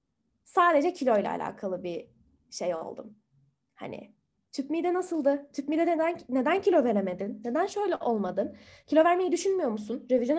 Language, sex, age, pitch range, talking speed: Turkish, female, 10-29, 260-380 Hz, 140 wpm